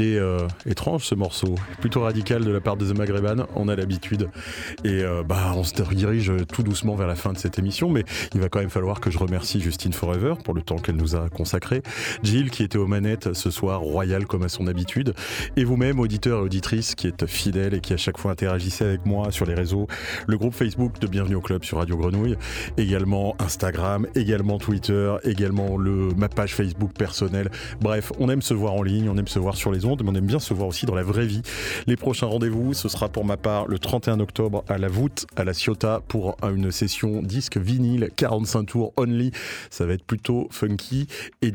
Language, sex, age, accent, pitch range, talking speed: French, male, 30-49, French, 95-110 Hz, 220 wpm